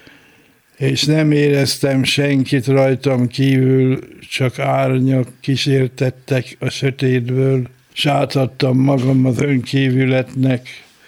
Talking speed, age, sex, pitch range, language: 80 wpm, 60-79, male, 125-135 Hz, Hungarian